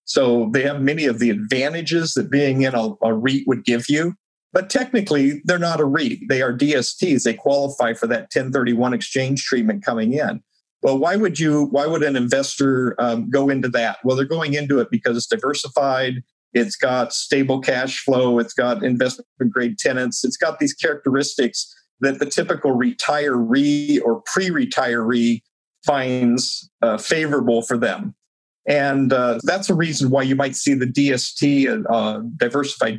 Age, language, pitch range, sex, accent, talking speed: 50-69, English, 125-150 Hz, male, American, 165 wpm